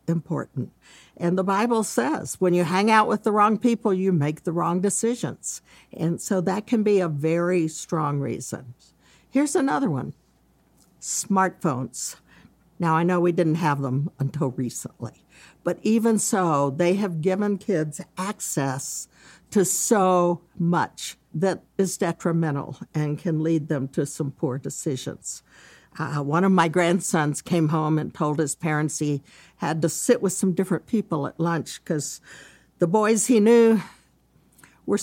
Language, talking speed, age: English, 150 wpm, 60-79